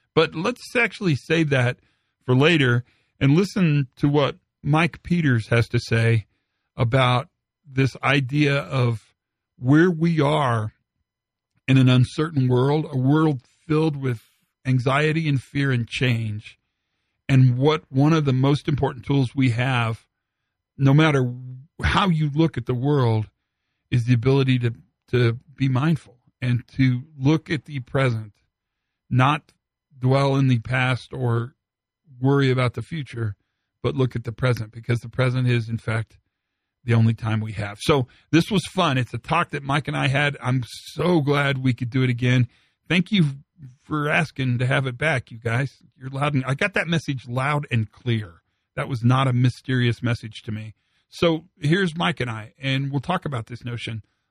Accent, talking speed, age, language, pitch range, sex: American, 170 wpm, 50-69, English, 120-145 Hz, male